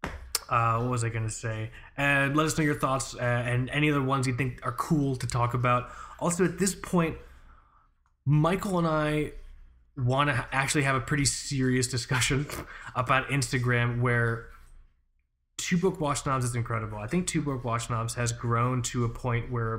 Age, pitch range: 20-39, 115-140 Hz